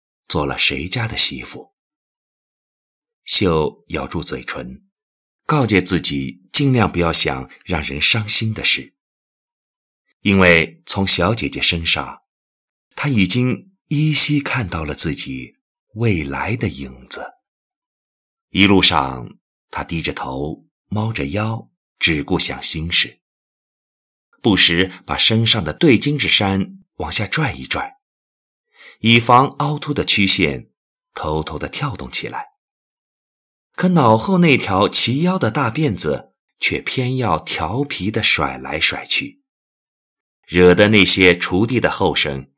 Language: Chinese